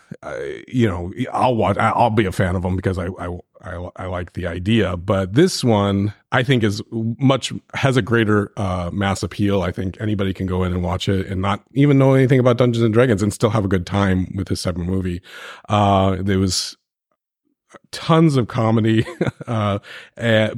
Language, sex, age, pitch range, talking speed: English, male, 30-49, 95-120 Hz, 200 wpm